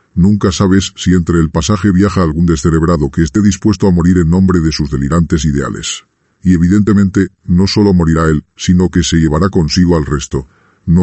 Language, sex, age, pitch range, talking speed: Spanish, female, 40-59, 80-95 Hz, 185 wpm